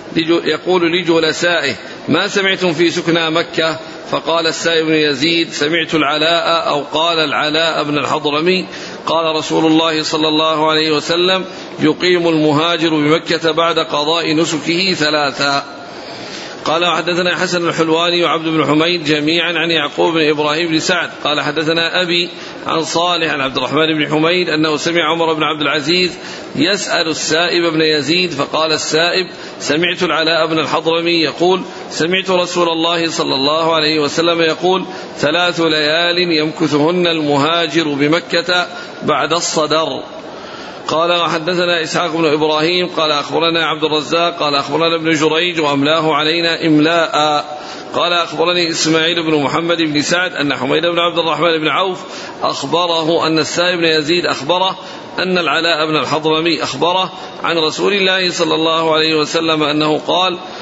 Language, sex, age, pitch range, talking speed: Arabic, male, 50-69, 155-170 Hz, 140 wpm